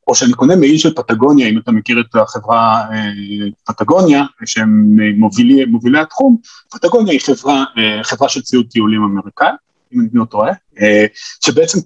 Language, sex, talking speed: Hebrew, male, 155 wpm